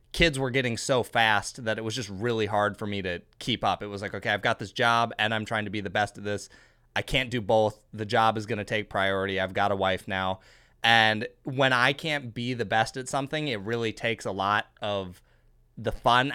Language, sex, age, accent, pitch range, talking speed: English, male, 20-39, American, 105-130 Hz, 240 wpm